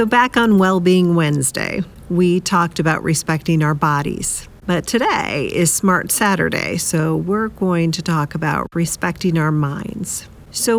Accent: American